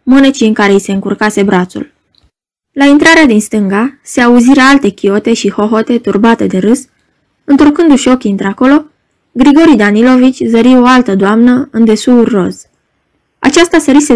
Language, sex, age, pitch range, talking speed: Romanian, female, 20-39, 210-275 Hz, 145 wpm